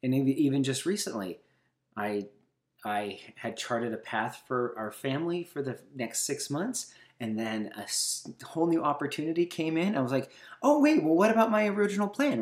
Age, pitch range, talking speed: 30-49, 110-170 Hz, 180 wpm